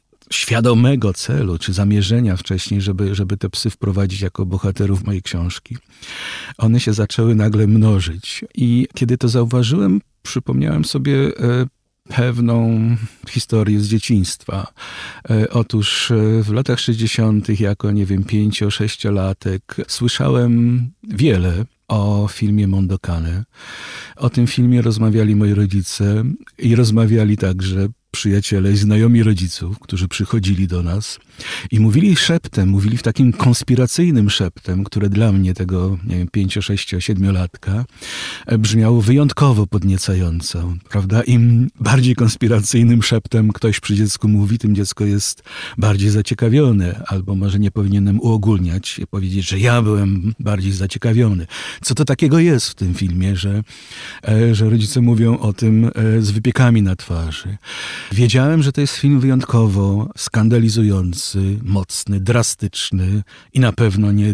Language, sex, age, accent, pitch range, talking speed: Polish, male, 50-69, native, 100-120 Hz, 125 wpm